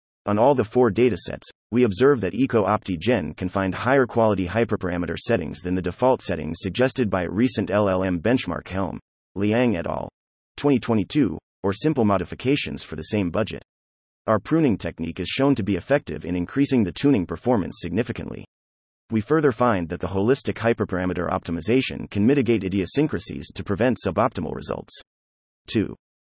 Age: 30-49